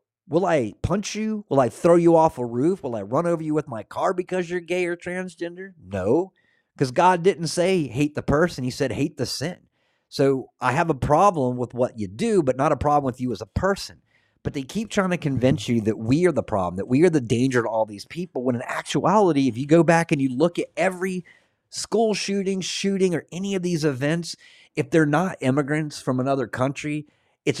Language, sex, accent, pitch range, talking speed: English, male, American, 120-170 Hz, 225 wpm